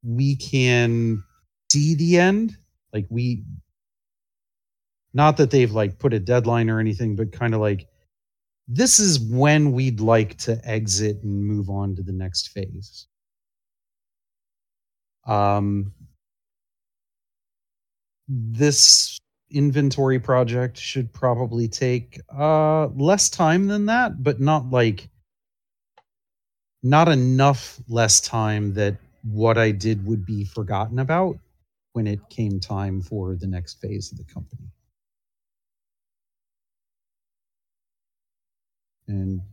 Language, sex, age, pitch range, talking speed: English, male, 30-49, 100-130 Hz, 110 wpm